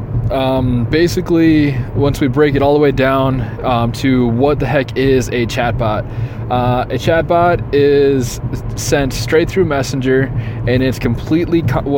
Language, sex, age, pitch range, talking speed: English, male, 20-39, 120-140 Hz, 140 wpm